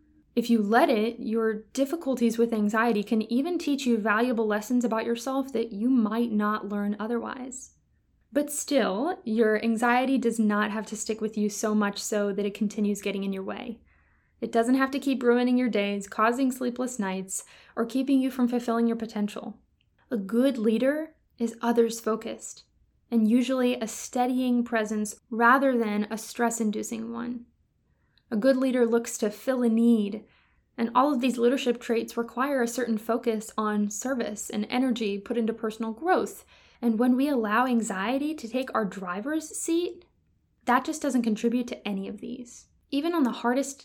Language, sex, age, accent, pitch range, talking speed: English, female, 10-29, American, 215-250 Hz, 170 wpm